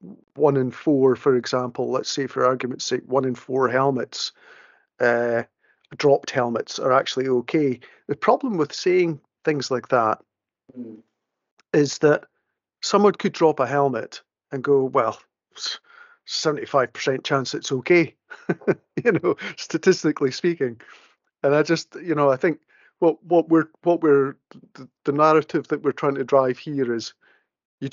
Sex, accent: male, British